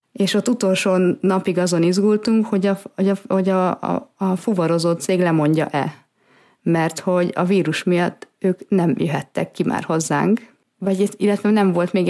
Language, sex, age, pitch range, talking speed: Hungarian, female, 30-49, 170-200 Hz, 165 wpm